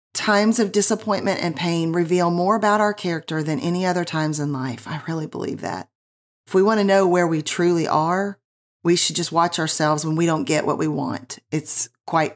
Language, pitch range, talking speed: English, 165-205 Hz, 210 wpm